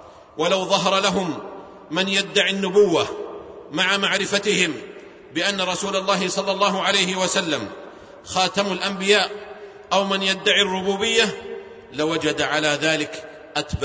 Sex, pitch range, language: male, 155-200 Hz, Arabic